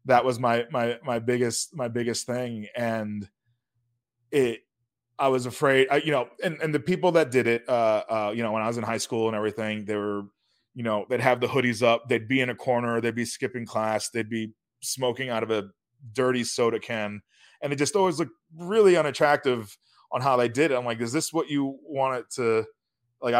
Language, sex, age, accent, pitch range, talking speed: English, male, 20-39, American, 110-130 Hz, 220 wpm